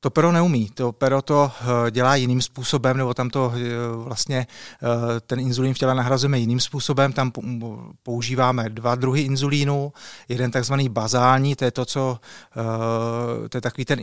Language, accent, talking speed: Czech, native, 155 wpm